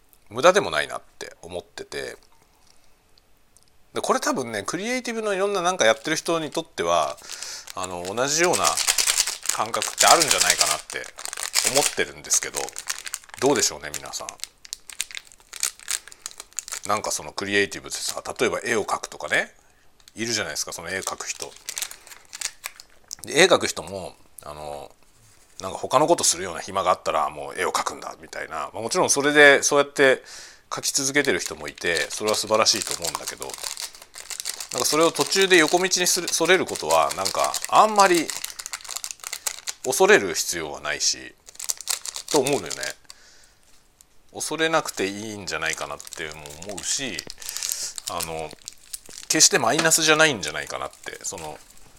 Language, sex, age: Japanese, male, 40-59